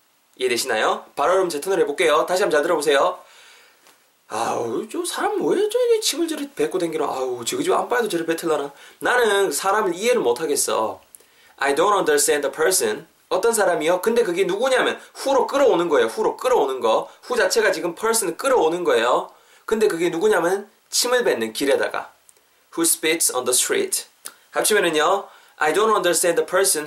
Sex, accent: male, native